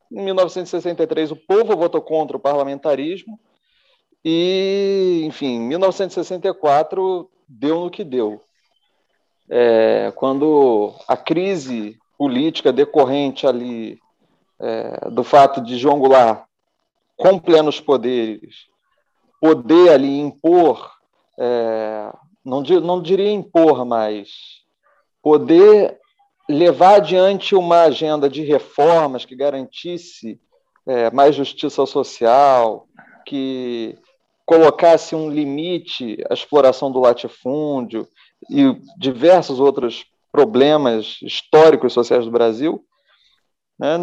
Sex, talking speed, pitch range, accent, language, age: male, 95 wpm, 130-190 Hz, Brazilian, Portuguese, 40-59